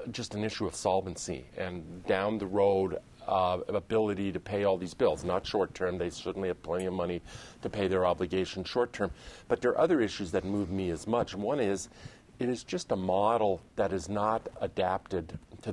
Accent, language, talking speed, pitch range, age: American, English, 195 wpm, 95-120 Hz, 40-59